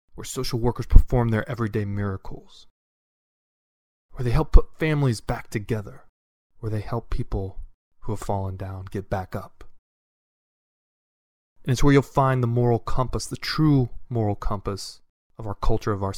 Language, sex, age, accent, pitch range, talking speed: English, male, 20-39, American, 95-120 Hz, 155 wpm